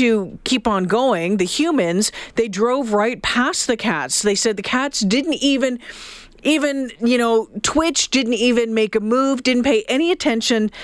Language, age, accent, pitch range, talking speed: English, 40-59, American, 180-235 Hz, 165 wpm